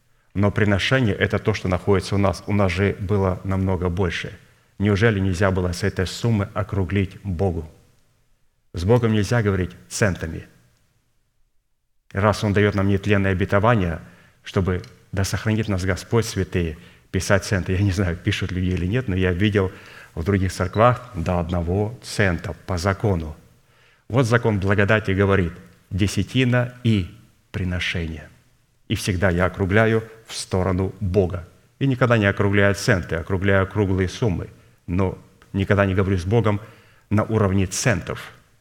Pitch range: 95-115 Hz